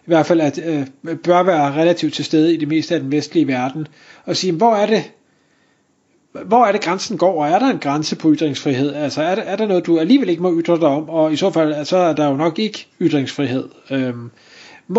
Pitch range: 155-205 Hz